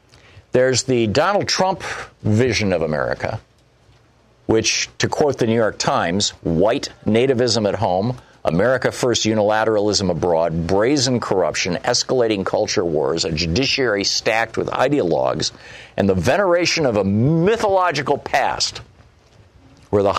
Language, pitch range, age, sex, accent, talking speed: English, 100-130 Hz, 50-69, male, American, 120 wpm